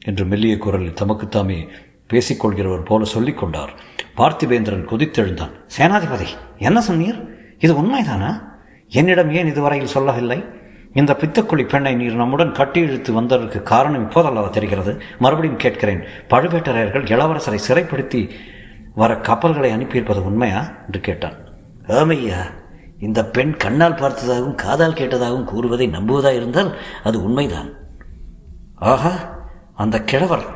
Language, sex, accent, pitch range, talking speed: Tamil, male, native, 110-165 Hz, 110 wpm